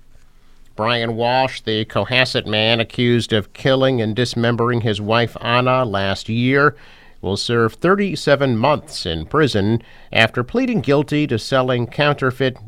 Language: English